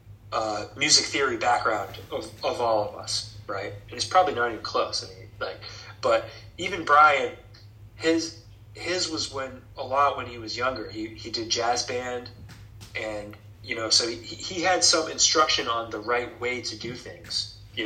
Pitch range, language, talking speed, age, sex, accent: 105-120 Hz, English, 180 wpm, 20-39, male, American